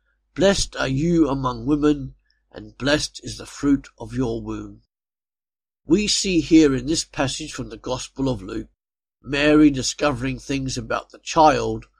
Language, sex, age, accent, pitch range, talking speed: English, male, 50-69, British, 115-155 Hz, 150 wpm